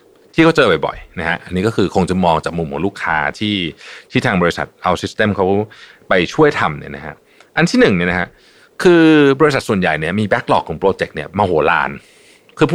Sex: male